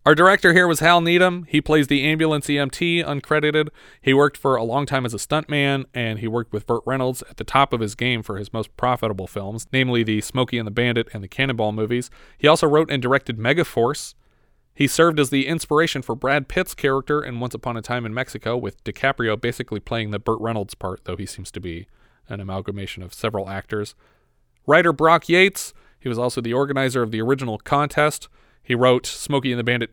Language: English